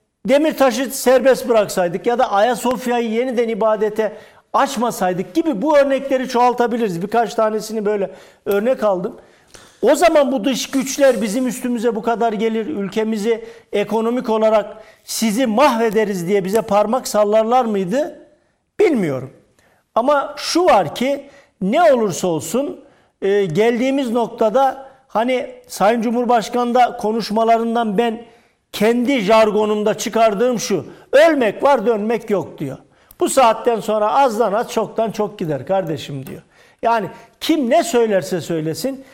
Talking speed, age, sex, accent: 120 wpm, 50-69, male, native